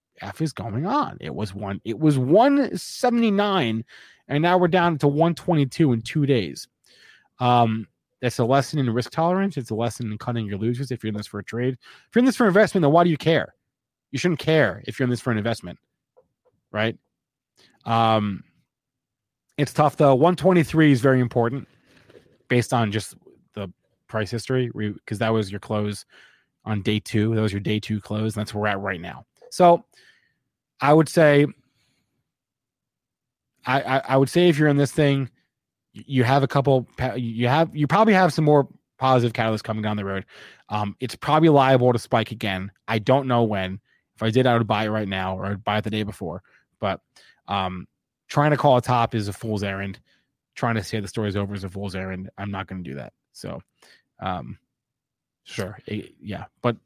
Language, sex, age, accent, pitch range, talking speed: English, male, 30-49, American, 105-145 Hz, 205 wpm